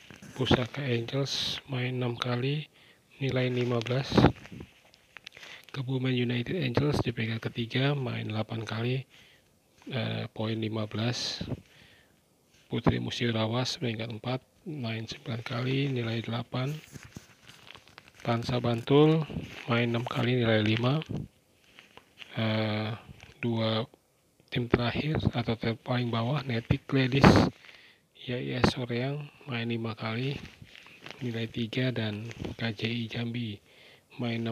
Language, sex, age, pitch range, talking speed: Indonesian, male, 40-59, 115-130 Hz, 100 wpm